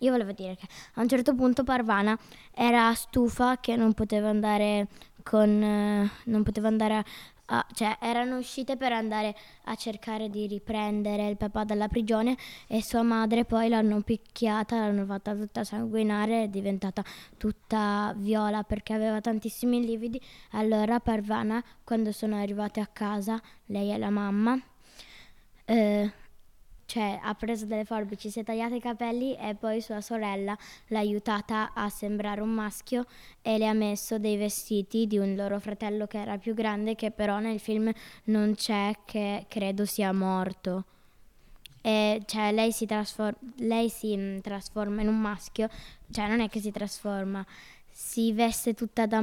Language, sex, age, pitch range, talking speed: Italian, female, 10-29, 205-225 Hz, 155 wpm